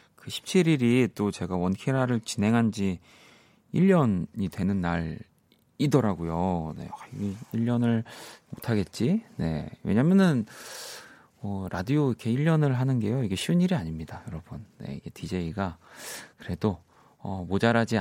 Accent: native